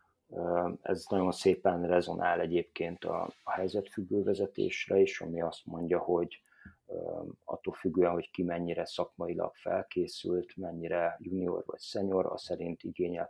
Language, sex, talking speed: Hungarian, male, 120 wpm